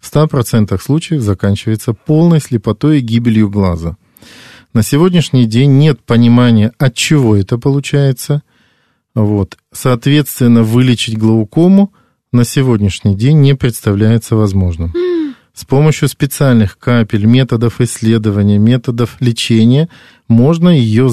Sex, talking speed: male, 110 wpm